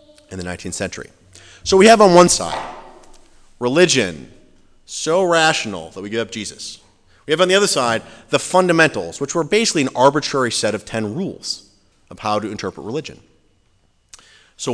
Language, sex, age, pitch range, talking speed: English, male, 30-49, 95-155 Hz, 165 wpm